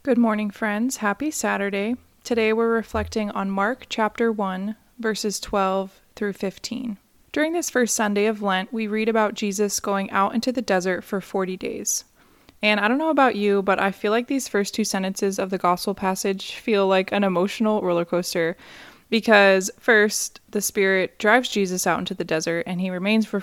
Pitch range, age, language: 185-220 Hz, 20-39, English